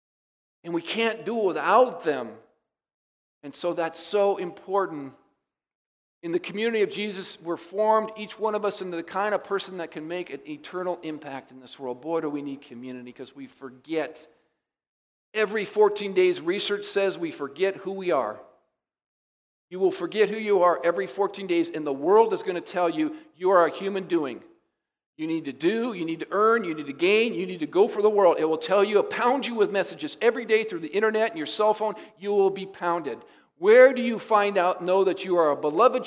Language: English